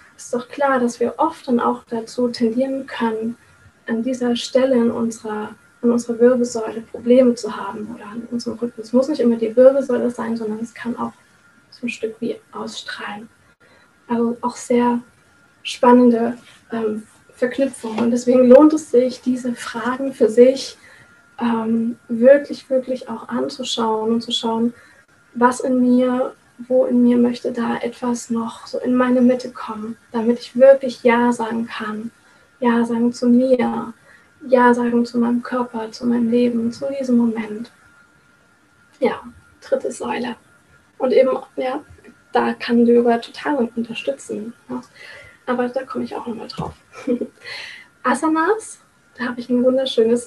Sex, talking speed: female, 150 wpm